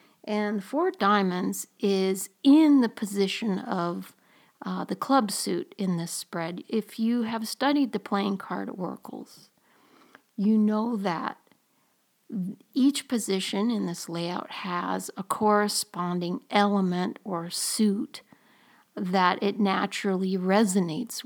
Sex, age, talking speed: female, 60-79, 120 wpm